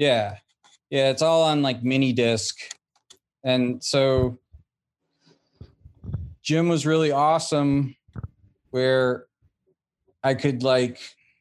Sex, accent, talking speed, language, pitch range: male, American, 95 wpm, English, 115-135 Hz